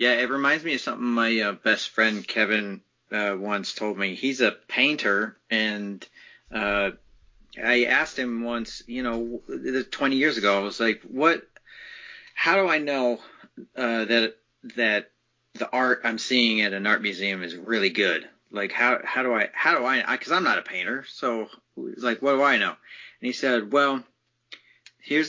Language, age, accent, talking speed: English, 40-59, American, 180 wpm